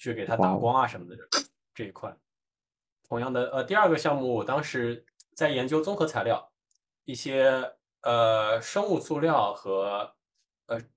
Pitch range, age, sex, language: 120-170 Hz, 10-29, male, Chinese